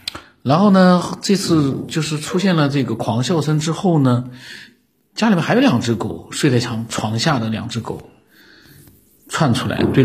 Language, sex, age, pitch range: Chinese, male, 50-69, 115-160 Hz